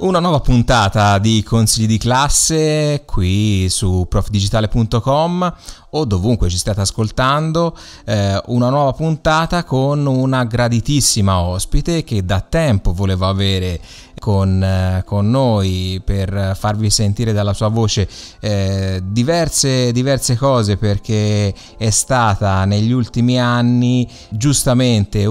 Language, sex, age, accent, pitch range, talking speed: Italian, male, 20-39, native, 100-120 Hz, 115 wpm